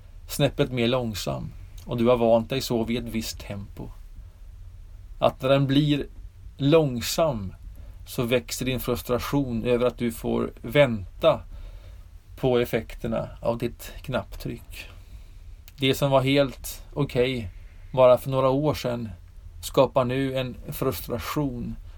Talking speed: 130 wpm